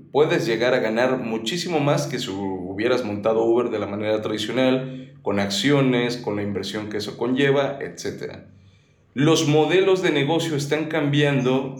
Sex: male